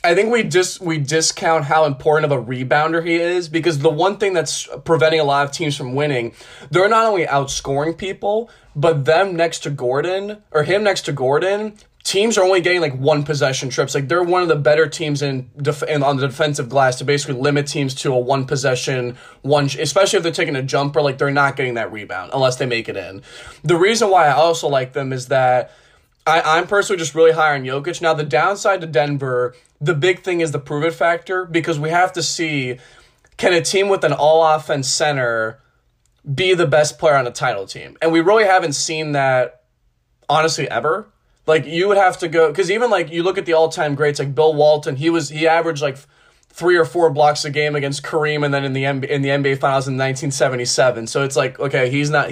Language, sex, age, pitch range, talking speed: English, male, 20-39, 140-165 Hz, 220 wpm